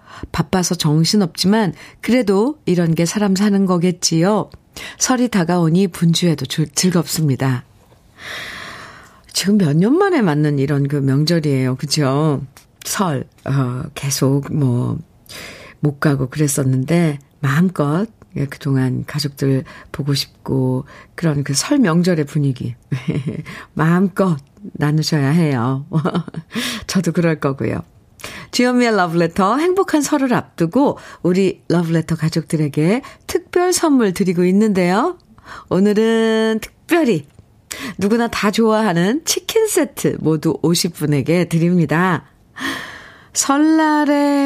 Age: 50-69